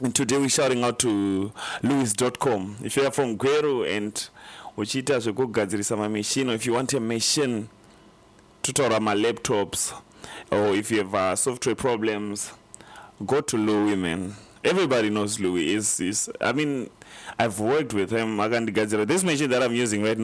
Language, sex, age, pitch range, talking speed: English, male, 30-49, 105-130 Hz, 165 wpm